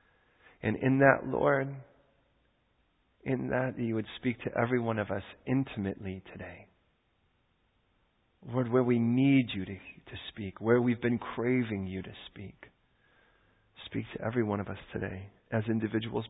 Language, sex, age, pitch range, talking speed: English, male, 40-59, 100-120 Hz, 145 wpm